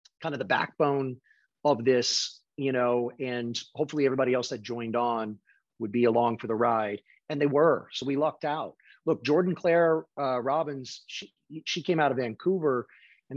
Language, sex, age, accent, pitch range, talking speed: English, male, 30-49, American, 125-165 Hz, 180 wpm